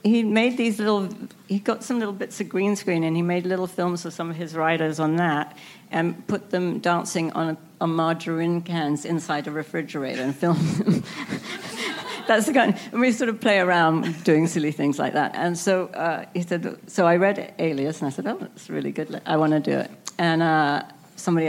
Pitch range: 150-185 Hz